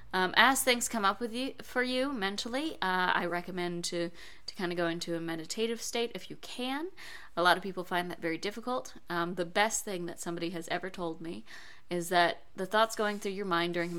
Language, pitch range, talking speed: English, 170-205 Hz, 225 wpm